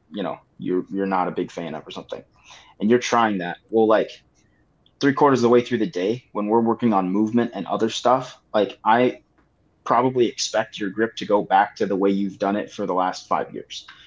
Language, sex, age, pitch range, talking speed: English, male, 20-39, 100-120 Hz, 225 wpm